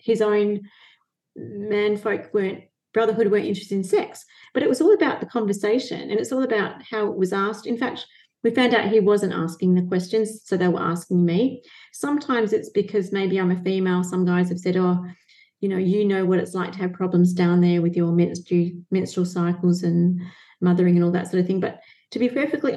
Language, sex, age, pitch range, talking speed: English, female, 30-49, 185-225 Hz, 215 wpm